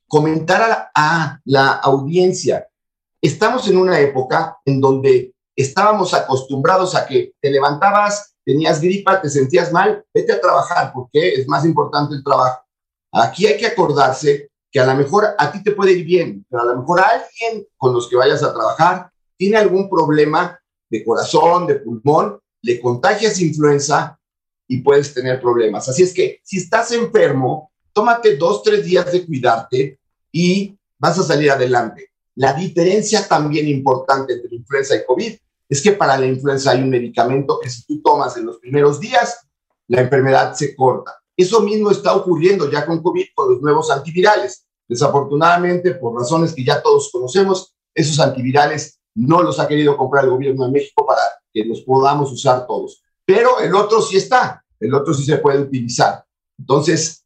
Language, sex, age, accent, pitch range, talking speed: Spanish, male, 50-69, Mexican, 135-210 Hz, 170 wpm